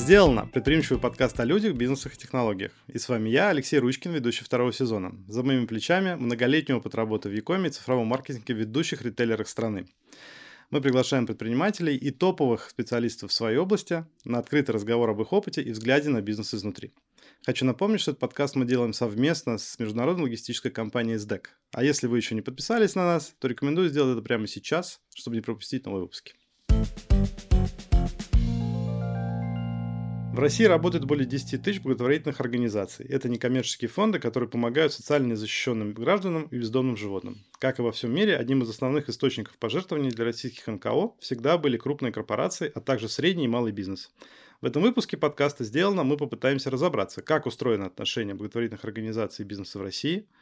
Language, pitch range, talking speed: Russian, 110-145 Hz, 170 wpm